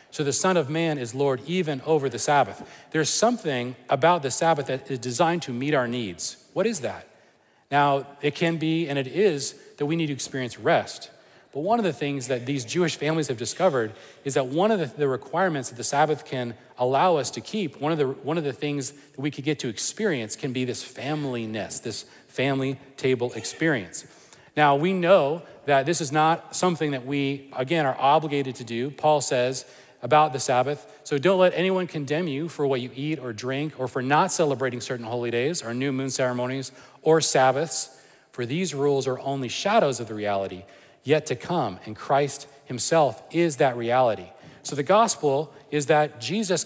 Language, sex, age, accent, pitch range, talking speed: English, male, 40-59, American, 130-160 Hz, 200 wpm